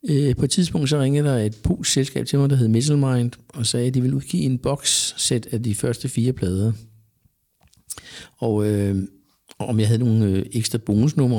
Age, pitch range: 60-79, 105-130 Hz